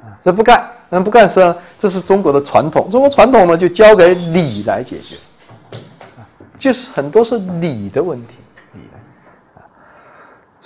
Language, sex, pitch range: Chinese, male, 135-220 Hz